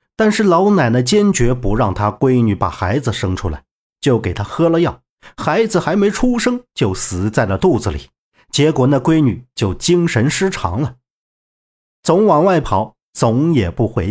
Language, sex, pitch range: Chinese, male, 110-175 Hz